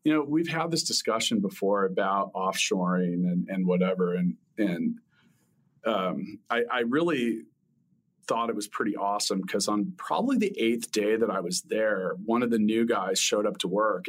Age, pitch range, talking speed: 40-59, 105-150 Hz, 180 wpm